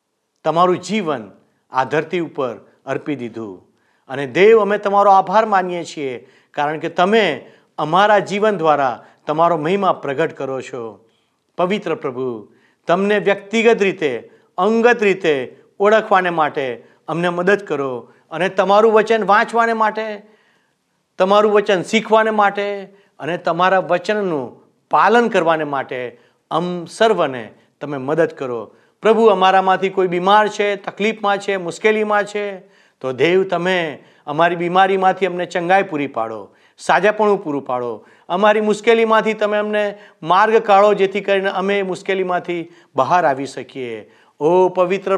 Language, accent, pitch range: Gujarati, native, 145-205 Hz